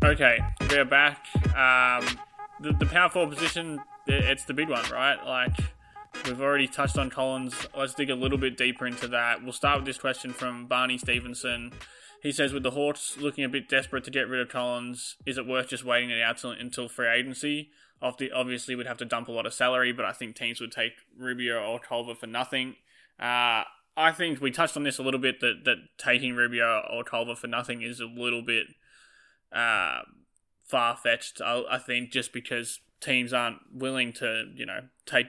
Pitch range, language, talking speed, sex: 120-135 Hz, English, 195 wpm, male